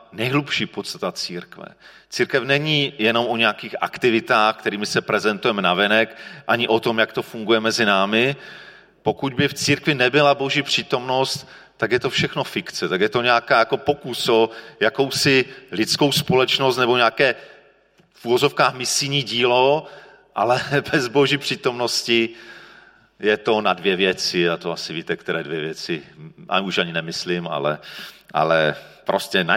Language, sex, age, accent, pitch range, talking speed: Czech, male, 40-59, native, 110-145 Hz, 150 wpm